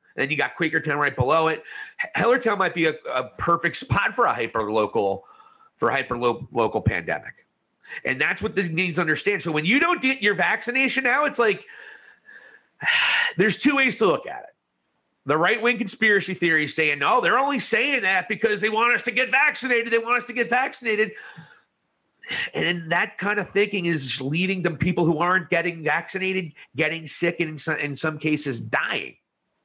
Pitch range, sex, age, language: 170-255 Hz, male, 40-59, English